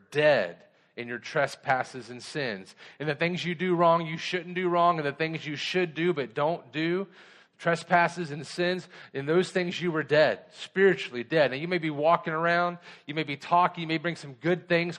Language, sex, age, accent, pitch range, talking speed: English, male, 40-59, American, 140-175 Hz, 210 wpm